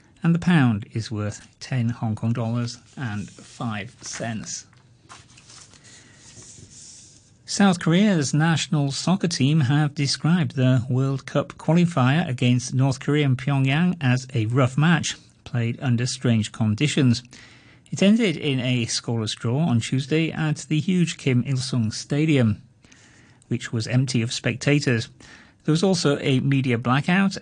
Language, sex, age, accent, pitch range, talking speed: English, male, 40-59, British, 120-145 Hz, 135 wpm